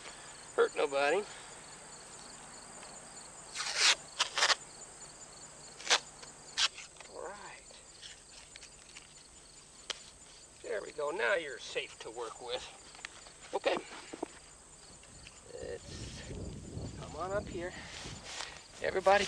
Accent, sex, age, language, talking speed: American, male, 60-79, English, 60 wpm